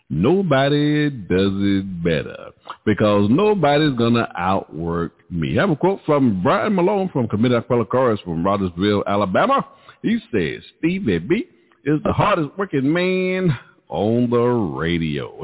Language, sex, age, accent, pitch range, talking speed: English, male, 50-69, American, 120-200 Hz, 150 wpm